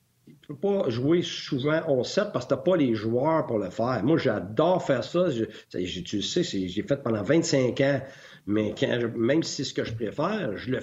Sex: male